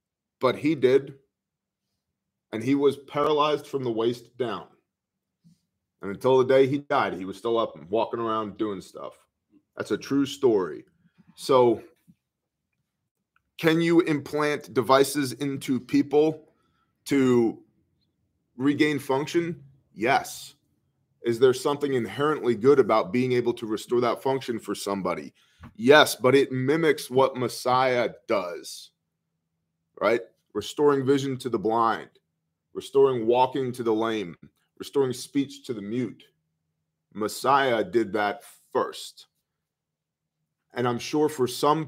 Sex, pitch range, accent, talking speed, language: male, 115-145 Hz, American, 125 wpm, English